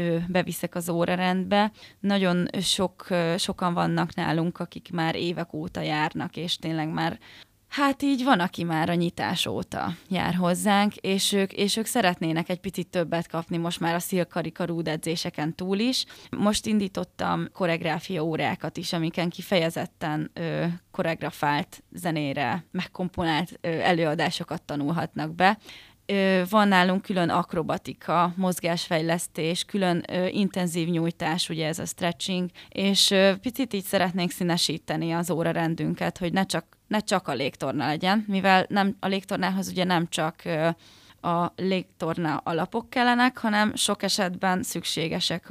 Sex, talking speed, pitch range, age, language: female, 135 wpm, 165-195 Hz, 20-39, Hungarian